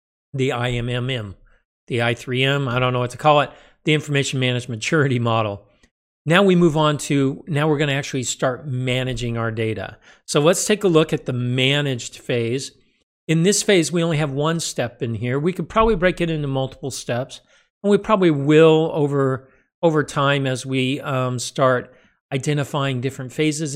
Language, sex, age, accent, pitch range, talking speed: English, male, 50-69, American, 125-150 Hz, 175 wpm